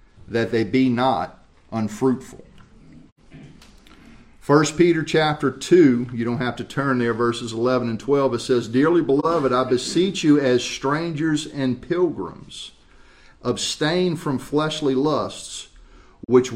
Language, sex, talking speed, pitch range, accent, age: English, male, 125 wpm, 115-145 Hz, American, 50-69